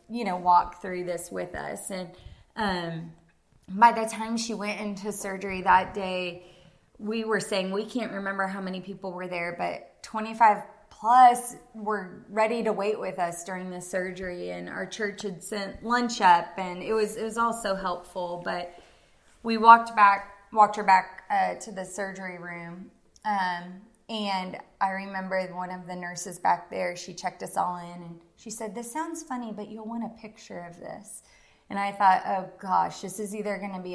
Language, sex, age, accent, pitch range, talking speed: English, female, 20-39, American, 180-210 Hz, 190 wpm